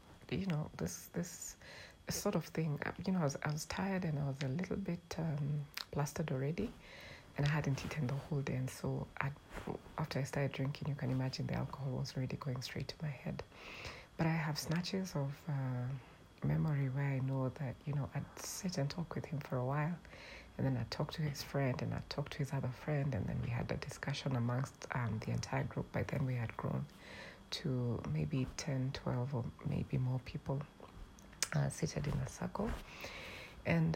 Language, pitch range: English, 130-150 Hz